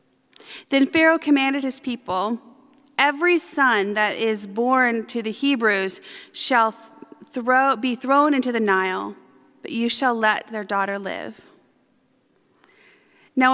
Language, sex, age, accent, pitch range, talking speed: English, female, 30-49, American, 200-245 Hz, 125 wpm